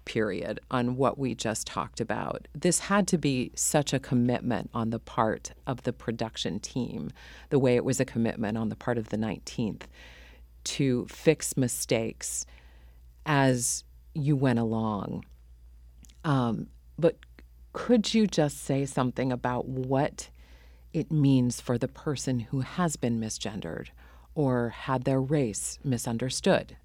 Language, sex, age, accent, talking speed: English, female, 40-59, American, 140 wpm